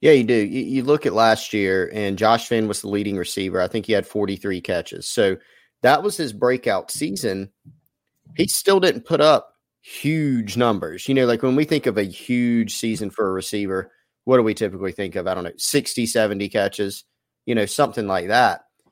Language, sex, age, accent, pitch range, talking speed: English, male, 30-49, American, 100-125 Hz, 205 wpm